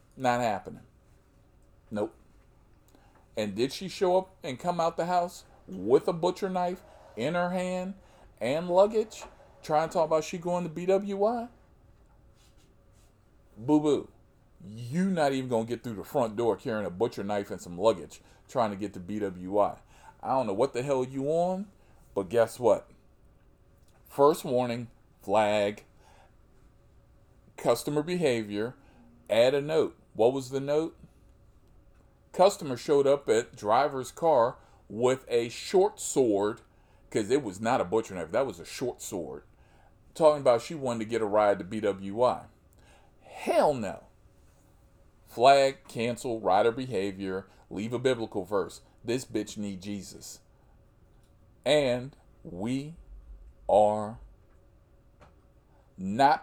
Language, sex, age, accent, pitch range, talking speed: English, male, 40-59, American, 100-150 Hz, 135 wpm